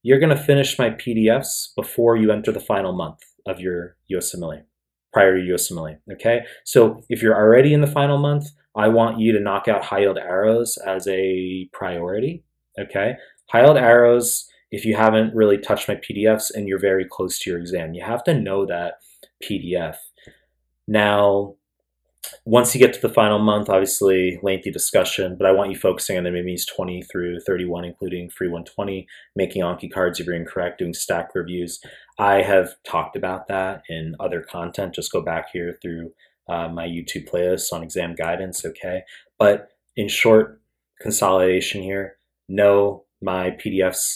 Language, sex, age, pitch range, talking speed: English, male, 30-49, 90-110 Hz, 170 wpm